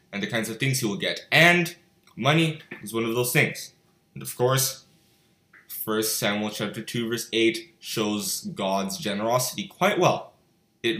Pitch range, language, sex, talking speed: 120-170 Hz, English, male, 165 wpm